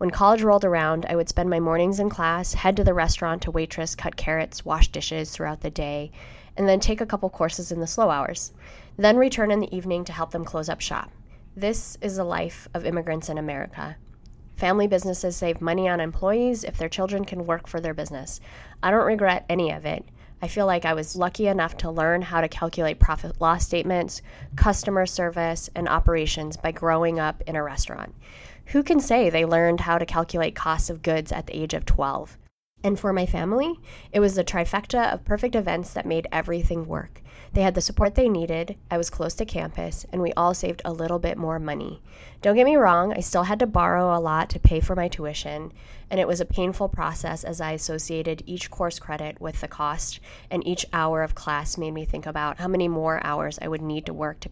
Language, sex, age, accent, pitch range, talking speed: English, female, 20-39, American, 160-185 Hz, 220 wpm